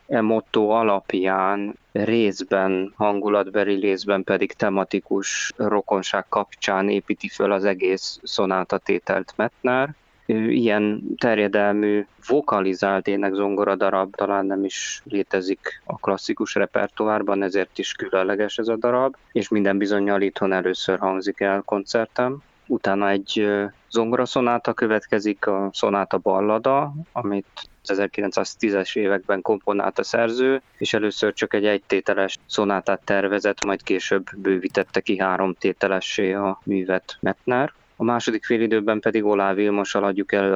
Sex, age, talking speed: male, 20-39, 120 wpm